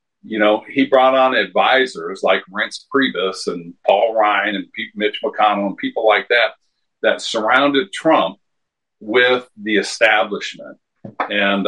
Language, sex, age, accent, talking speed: English, male, 50-69, American, 140 wpm